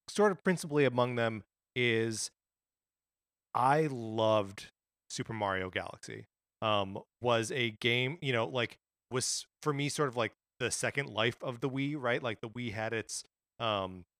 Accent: American